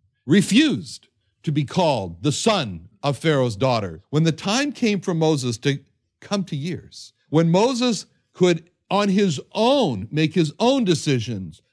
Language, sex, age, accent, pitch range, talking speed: English, male, 60-79, American, 120-180 Hz, 150 wpm